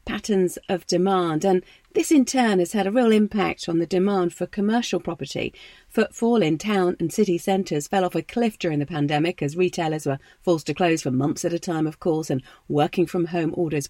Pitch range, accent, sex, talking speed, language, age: 170-220 Hz, British, female, 210 wpm, English, 40-59